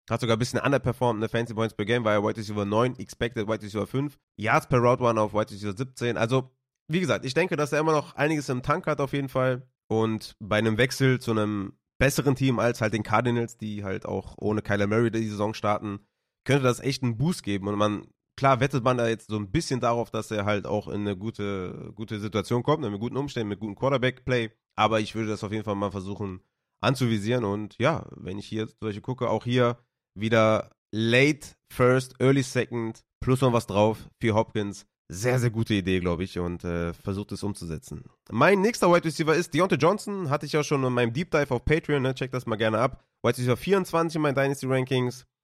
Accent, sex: German, male